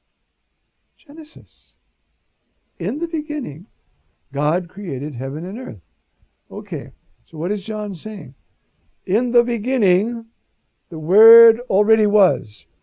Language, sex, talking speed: English, male, 105 wpm